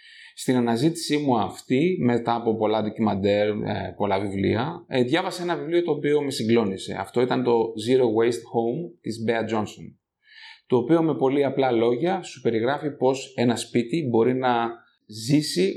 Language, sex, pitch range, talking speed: Greek, male, 115-150 Hz, 150 wpm